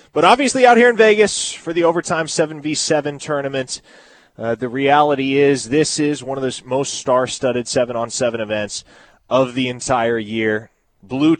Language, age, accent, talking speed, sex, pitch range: English, 30-49, American, 155 wpm, male, 110-140 Hz